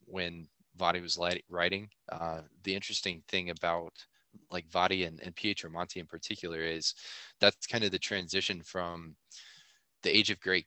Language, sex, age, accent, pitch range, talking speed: English, male, 20-39, American, 80-95 Hz, 160 wpm